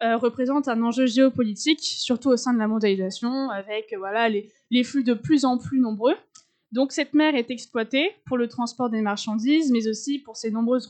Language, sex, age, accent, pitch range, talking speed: French, female, 20-39, French, 220-265 Hz, 205 wpm